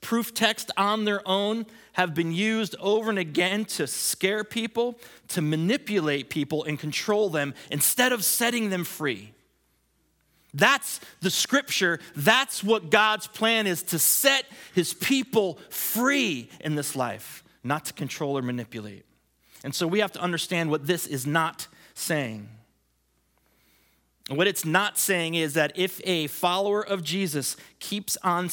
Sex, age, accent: male, 30-49, American